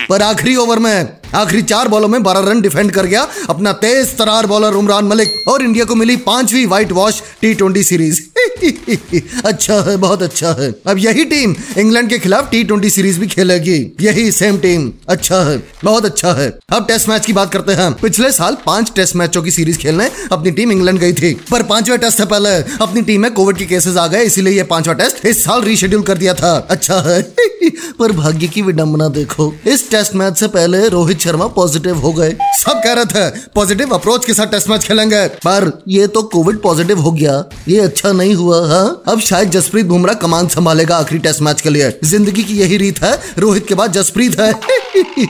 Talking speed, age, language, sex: 205 wpm, 20-39, Hindi, male